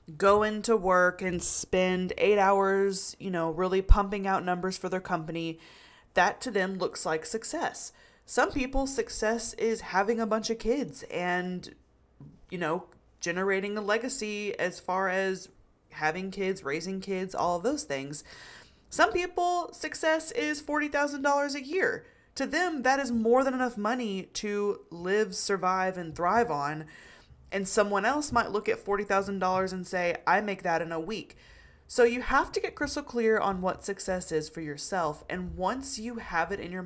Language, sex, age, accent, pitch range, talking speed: English, female, 20-39, American, 175-230 Hz, 170 wpm